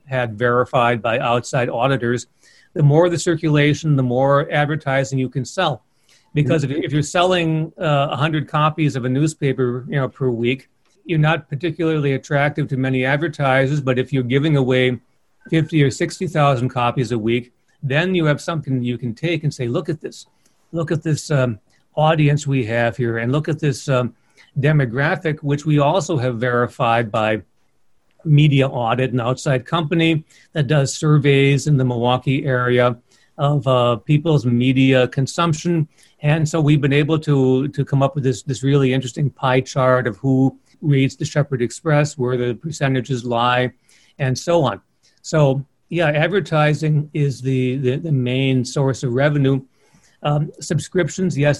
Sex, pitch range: male, 130-155 Hz